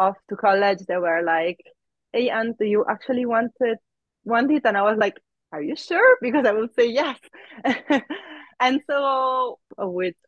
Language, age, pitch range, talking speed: English, 20-39, 175-215 Hz, 170 wpm